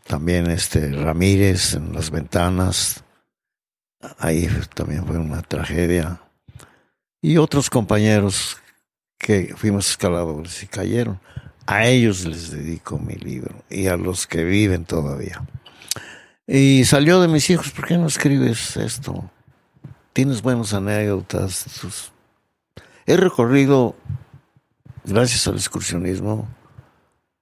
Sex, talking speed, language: male, 105 wpm, Spanish